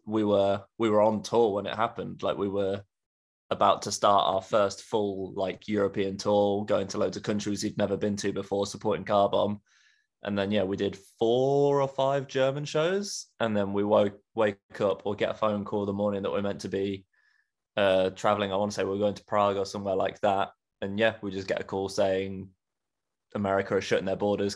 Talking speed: 220 wpm